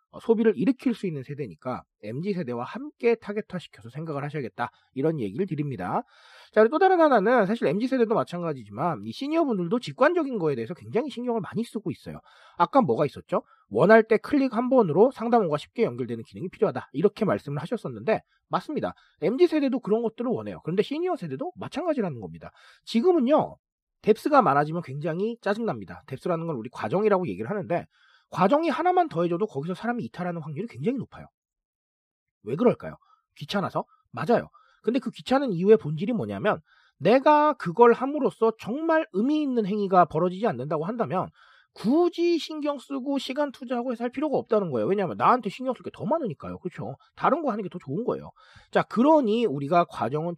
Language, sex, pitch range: Korean, male, 165-255 Hz